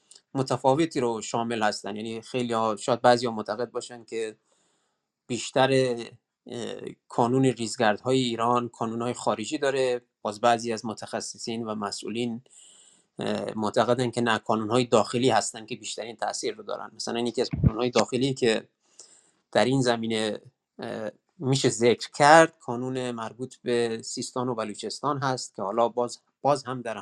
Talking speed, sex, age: 150 wpm, male, 30-49